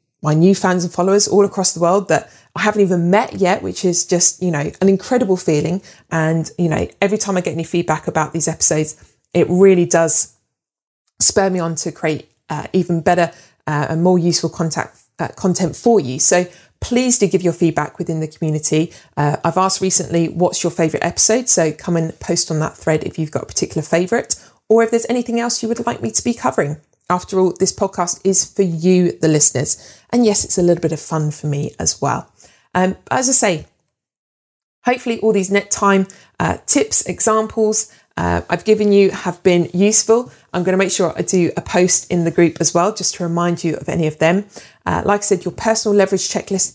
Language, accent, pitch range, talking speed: English, British, 165-200 Hz, 215 wpm